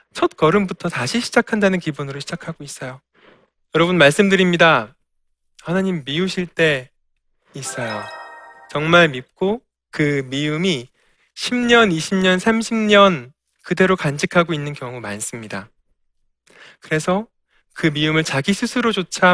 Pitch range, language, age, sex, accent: 145-215 Hz, Korean, 20-39, male, native